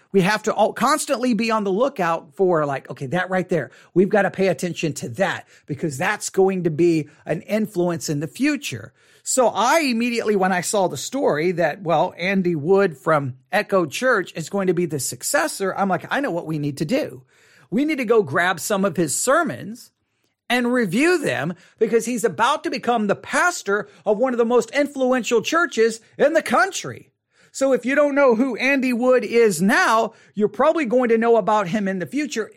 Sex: male